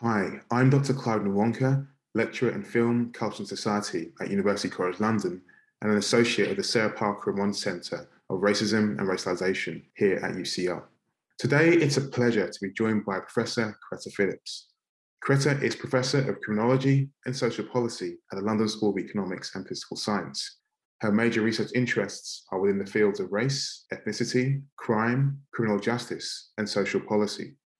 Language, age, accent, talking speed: English, 20-39, British, 165 wpm